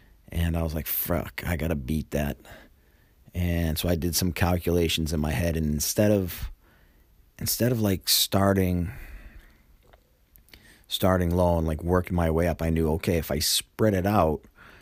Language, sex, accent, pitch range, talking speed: English, male, American, 80-95 Hz, 165 wpm